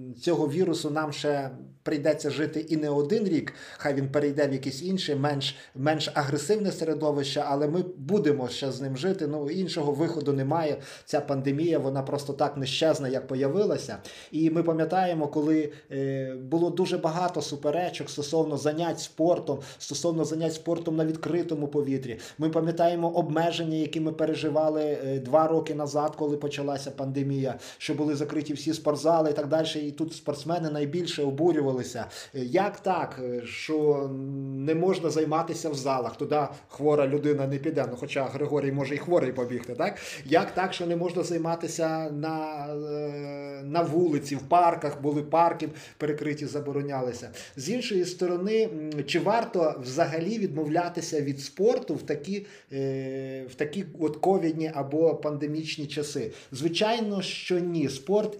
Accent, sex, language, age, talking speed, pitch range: native, male, Ukrainian, 30-49, 140 wpm, 145-165 Hz